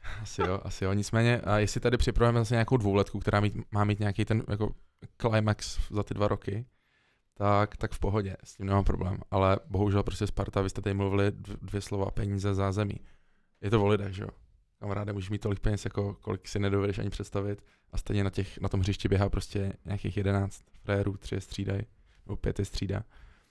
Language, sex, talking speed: Czech, male, 205 wpm